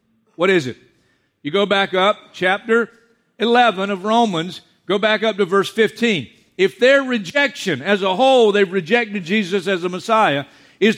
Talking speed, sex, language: 165 wpm, male, English